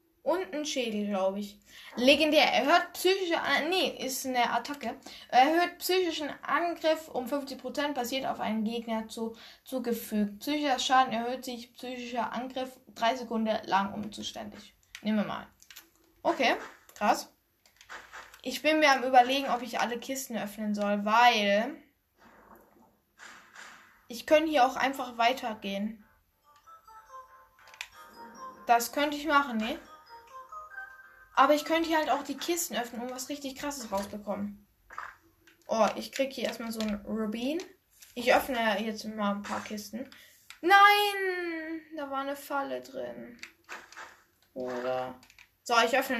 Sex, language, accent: female, German, German